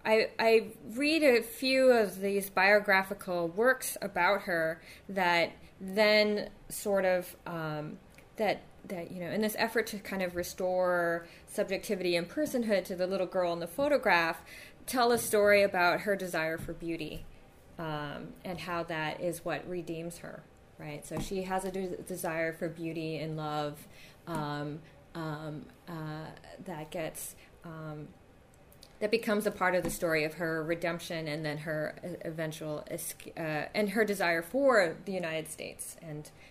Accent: American